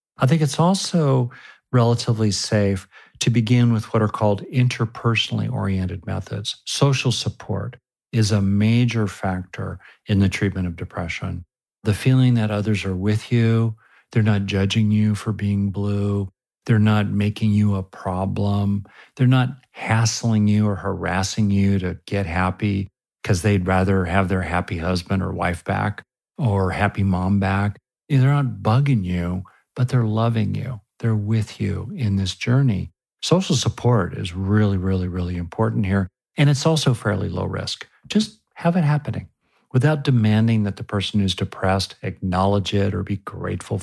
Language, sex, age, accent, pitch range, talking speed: English, male, 50-69, American, 95-120 Hz, 155 wpm